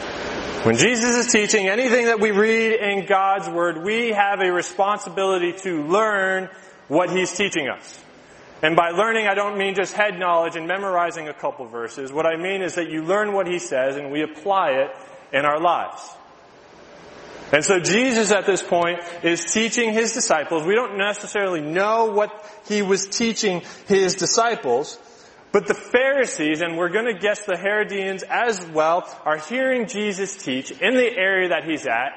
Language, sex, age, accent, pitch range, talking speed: English, male, 30-49, American, 170-210 Hz, 175 wpm